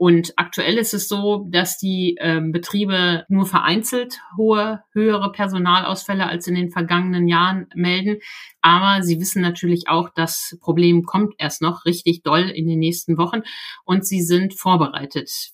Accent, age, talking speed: German, 50-69, 150 wpm